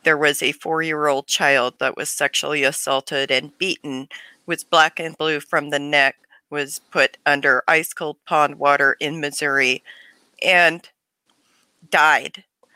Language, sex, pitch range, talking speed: English, female, 150-185 Hz, 130 wpm